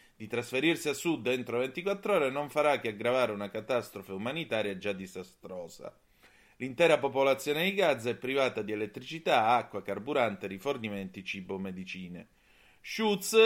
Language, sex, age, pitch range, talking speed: Italian, male, 30-49, 105-150 Hz, 135 wpm